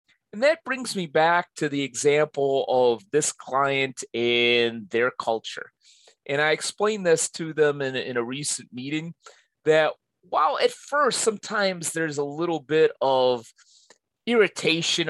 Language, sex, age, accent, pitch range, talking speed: English, male, 30-49, American, 130-185 Hz, 145 wpm